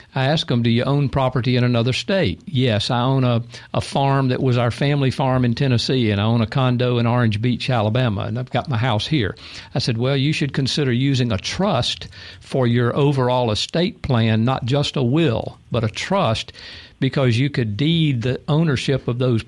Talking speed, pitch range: 205 wpm, 115-145 Hz